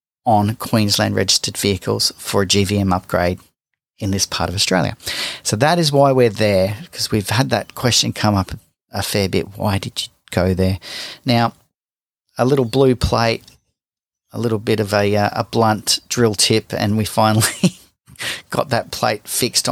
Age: 40-59